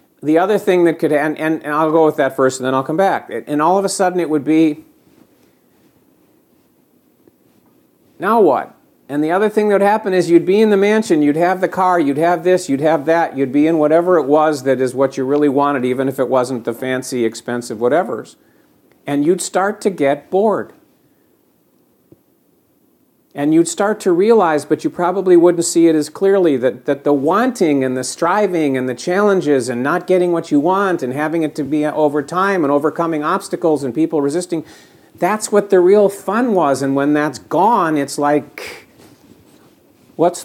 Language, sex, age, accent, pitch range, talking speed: English, male, 50-69, American, 145-185 Hz, 195 wpm